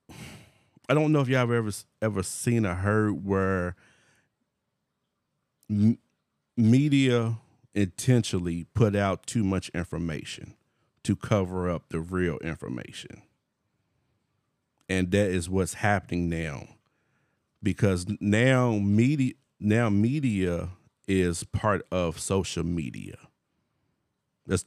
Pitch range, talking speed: 95-120 Hz, 105 wpm